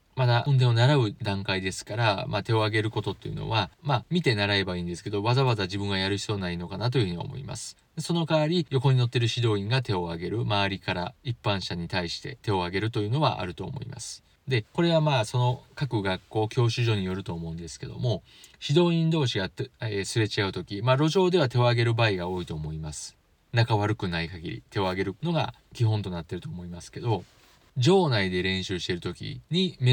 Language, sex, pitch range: Japanese, male, 95-130 Hz